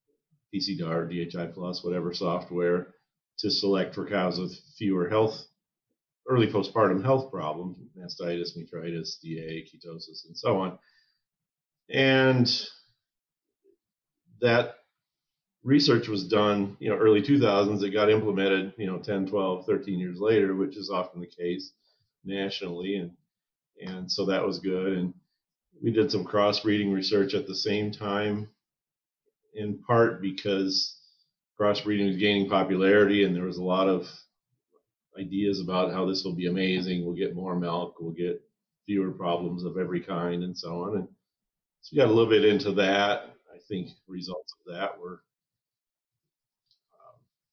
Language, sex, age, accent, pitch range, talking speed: English, male, 40-59, American, 90-105 Hz, 145 wpm